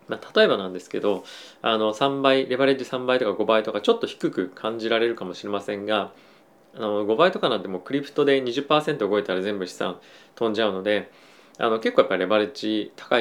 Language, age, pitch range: Japanese, 20-39, 105-135 Hz